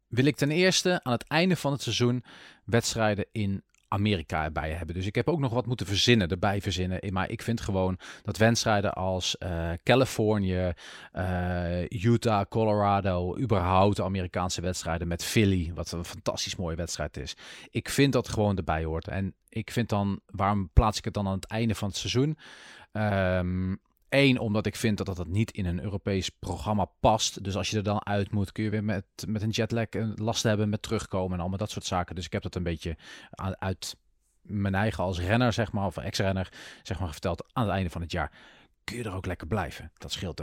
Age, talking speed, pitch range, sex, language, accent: 40-59, 205 wpm, 95-120 Hz, male, English, Dutch